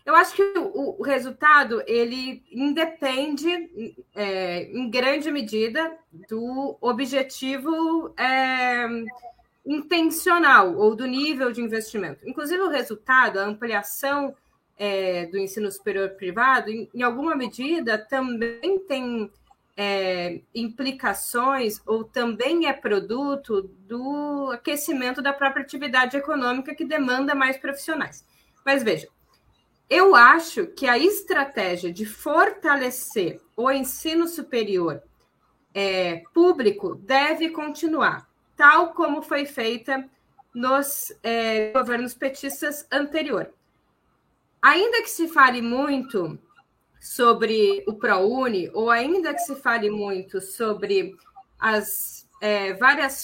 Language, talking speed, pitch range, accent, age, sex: Portuguese, 100 wpm, 215-295 Hz, Brazilian, 20-39, female